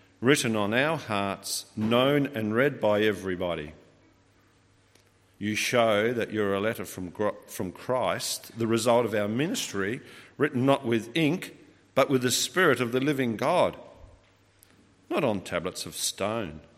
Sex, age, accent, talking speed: male, 50-69, Australian, 145 wpm